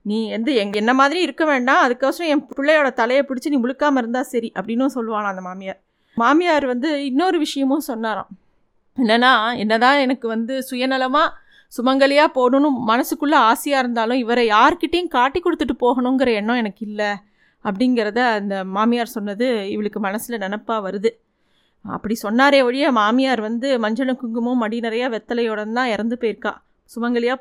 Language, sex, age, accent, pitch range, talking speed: Tamil, female, 20-39, native, 225-275 Hz, 145 wpm